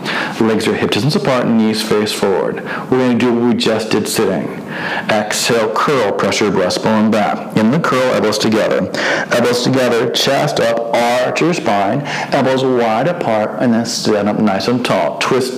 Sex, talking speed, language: male, 175 wpm, English